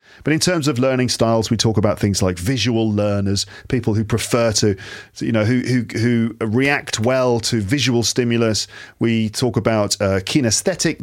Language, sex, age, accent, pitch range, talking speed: English, male, 40-59, British, 105-130 Hz, 170 wpm